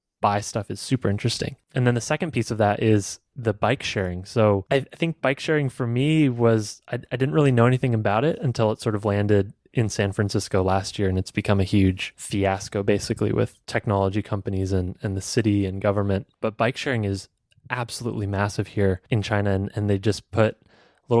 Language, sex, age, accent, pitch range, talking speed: English, male, 20-39, American, 100-125 Hz, 205 wpm